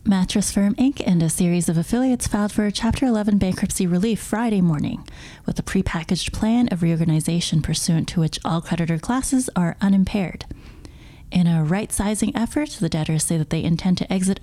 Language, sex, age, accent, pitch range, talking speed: English, female, 30-49, American, 170-225 Hz, 185 wpm